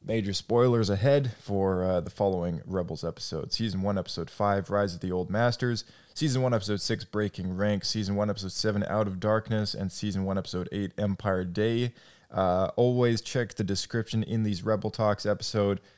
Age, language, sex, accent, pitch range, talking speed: 20-39, English, male, American, 95-110 Hz, 180 wpm